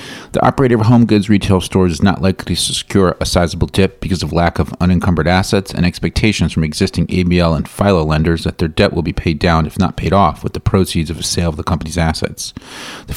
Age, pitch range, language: 40-59, 80-95 Hz, English